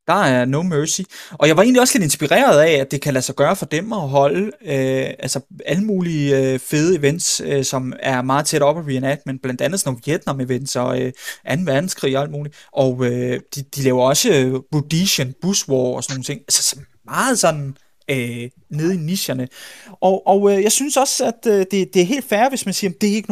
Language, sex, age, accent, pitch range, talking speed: Danish, male, 20-39, native, 135-190 Hz, 240 wpm